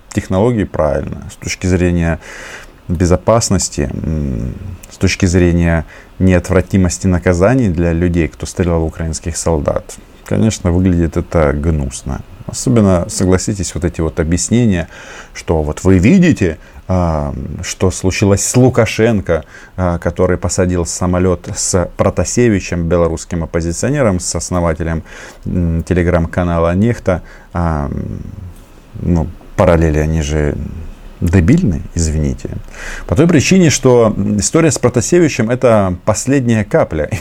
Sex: male